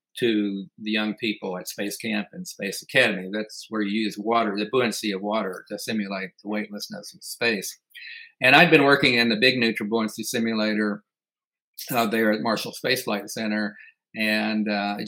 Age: 50-69